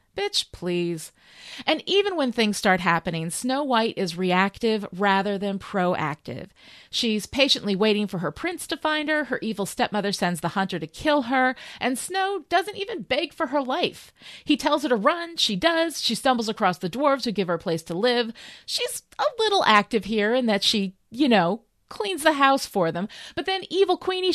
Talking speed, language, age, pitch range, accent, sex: 195 wpm, English, 30-49, 195-315 Hz, American, female